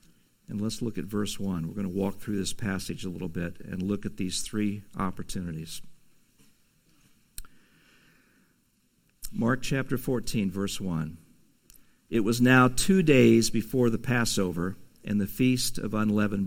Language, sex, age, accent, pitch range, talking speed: English, male, 50-69, American, 100-125 Hz, 145 wpm